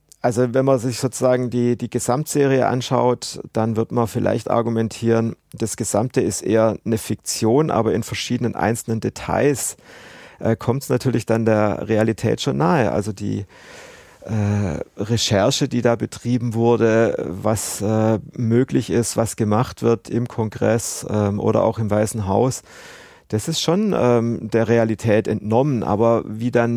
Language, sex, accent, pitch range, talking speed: German, male, German, 105-120 Hz, 150 wpm